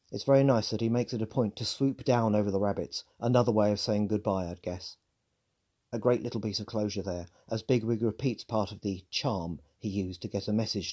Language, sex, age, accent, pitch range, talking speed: English, male, 40-59, British, 100-125 Hz, 230 wpm